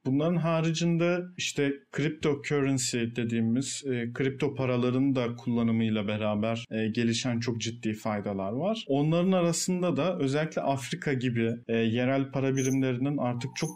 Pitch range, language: 120-145 Hz, Turkish